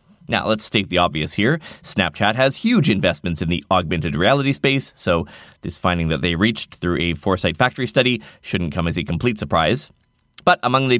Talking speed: 190 wpm